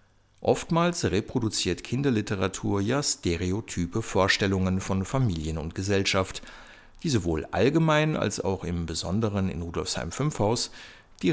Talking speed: 110 wpm